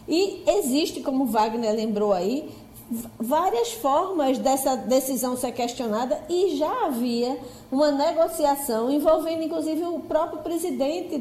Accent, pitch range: Brazilian, 245-320 Hz